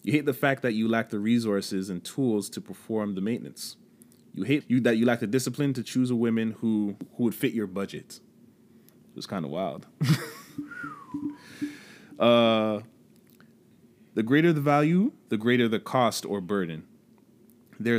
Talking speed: 165 wpm